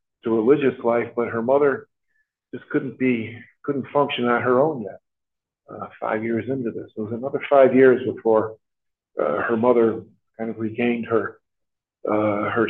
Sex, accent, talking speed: male, American, 165 wpm